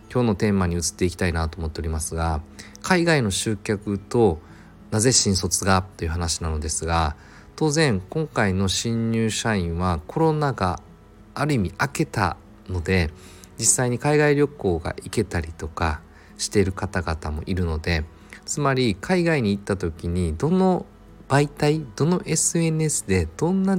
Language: Japanese